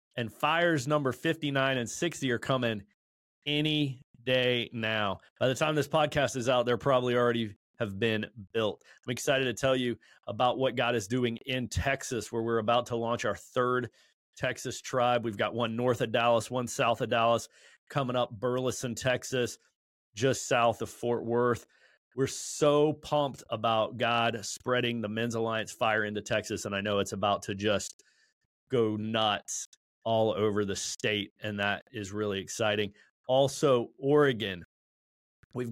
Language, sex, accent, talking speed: English, male, American, 165 wpm